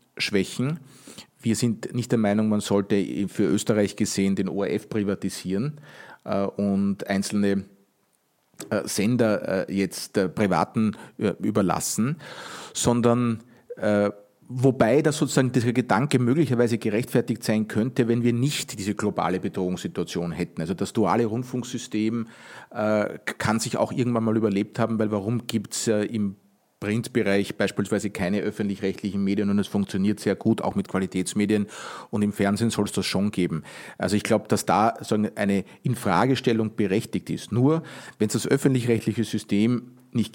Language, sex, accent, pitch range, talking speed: German, male, Austrian, 100-120 Hz, 135 wpm